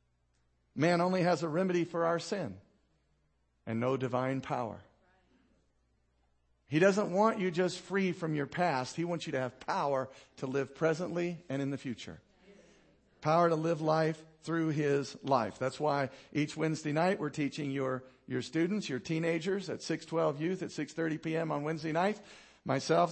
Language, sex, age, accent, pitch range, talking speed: English, male, 50-69, American, 145-200 Hz, 165 wpm